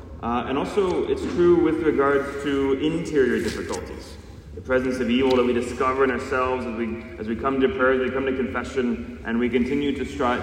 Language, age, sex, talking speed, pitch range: English, 30-49, male, 205 wpm, 115-140 Hz